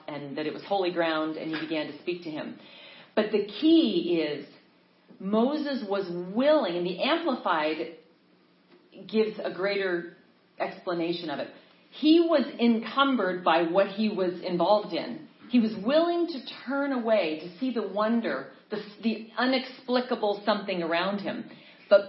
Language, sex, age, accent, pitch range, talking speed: English, female, 40-59, American, 175-255 Hz, 150 wpm